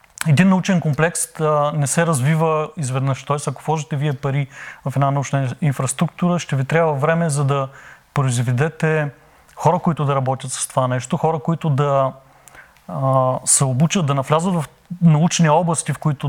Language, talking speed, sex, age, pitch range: Bulgarian, 160 wpm, male, 30-49, 135-165 Hz